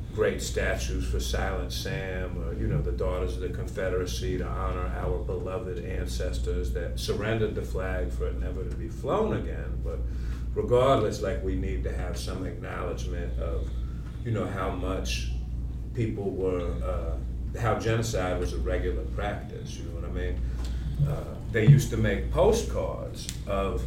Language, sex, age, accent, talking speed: English, male, 40-59, American, 160 wpm